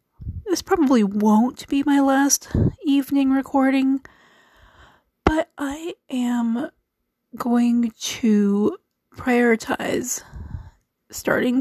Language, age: English, 30-49